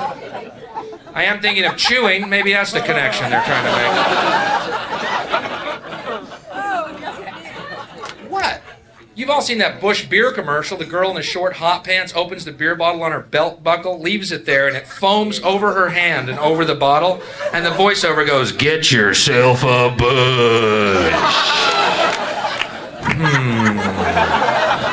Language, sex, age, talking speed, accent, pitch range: Danish, male, 40-59, 140 wpm, American, 140-205 Hz